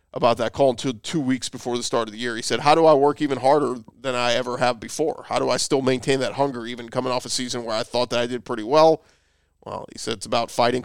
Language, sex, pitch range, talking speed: English, male, 120-145 Hz, 280 wpm